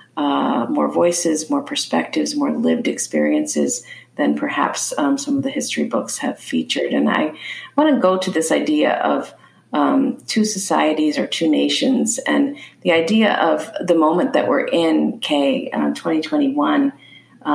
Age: 40-59